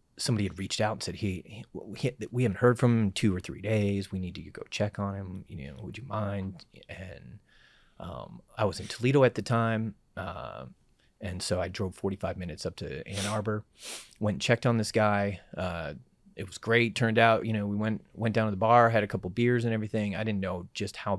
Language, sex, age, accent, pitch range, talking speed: English, male, 30-49, American, 95-115 Hz, 230 wpm